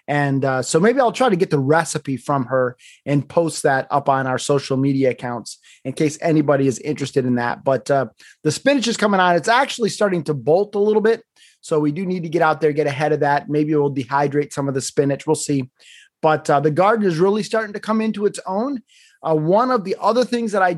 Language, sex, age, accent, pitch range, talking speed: English, male, 30-49, American, 150-205 Hz, 245 wpm